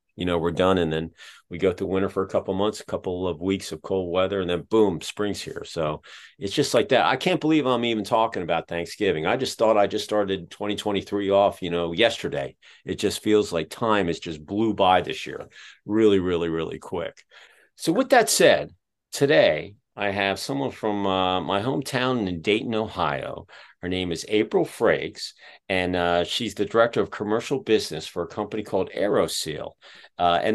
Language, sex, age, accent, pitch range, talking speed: English, male, 50-69, American, 90-110 Hz, 200 wpm